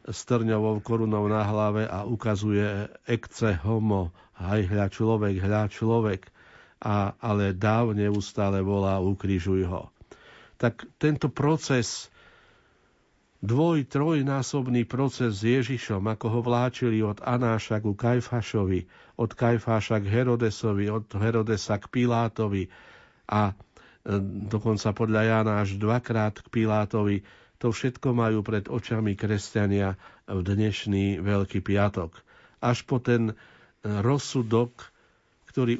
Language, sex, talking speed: Slovak, male, 110 wpm